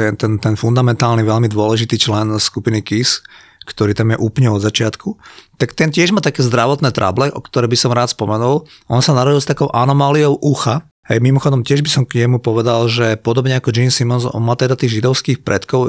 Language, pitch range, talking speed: Slovak, 115-140 Hz, 205 wpm